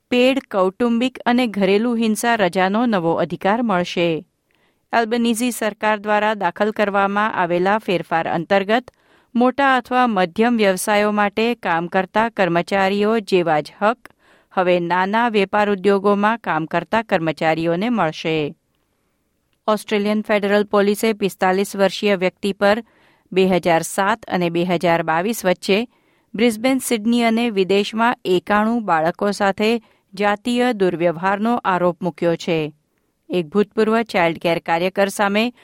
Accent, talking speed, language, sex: native, 100 wpm, Gujarati, female